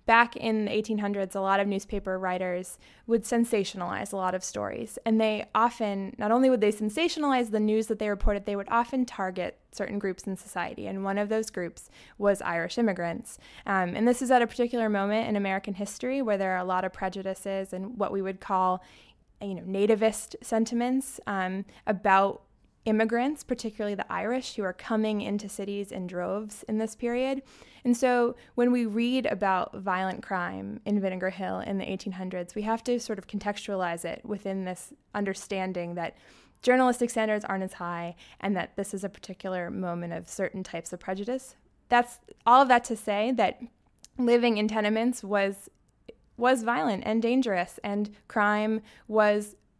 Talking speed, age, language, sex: 175 wpm, 20-39, English, female